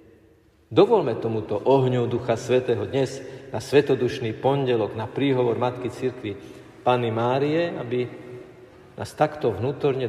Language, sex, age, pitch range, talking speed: Slovak, male, 50-69, 110-135 Hz, 115 wpm